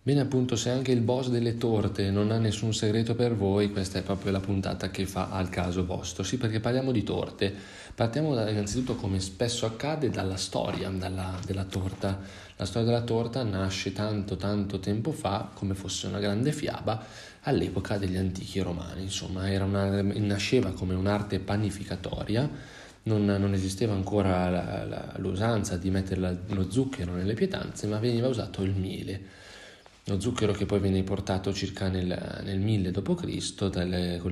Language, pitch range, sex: Italian, 95-115 Hz, male